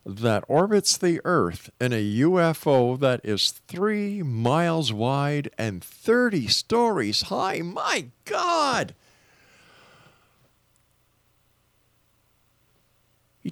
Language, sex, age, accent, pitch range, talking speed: English, male, 50-69, American, 110-170 Hz, 85 wpm